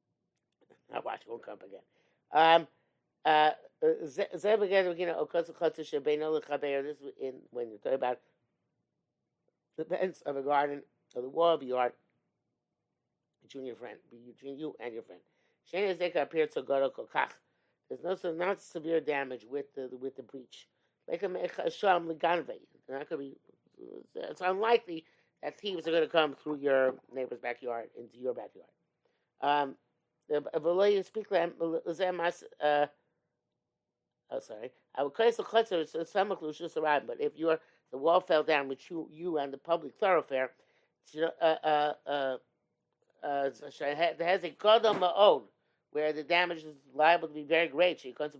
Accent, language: American, English